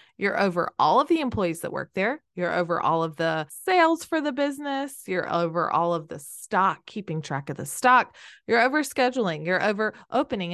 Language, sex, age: English, female, 20-39